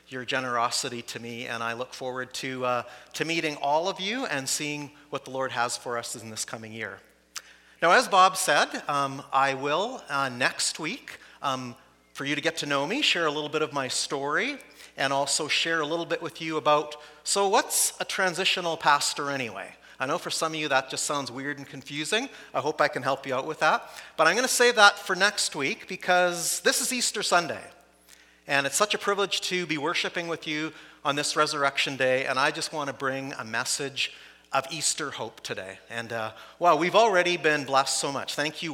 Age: 40-59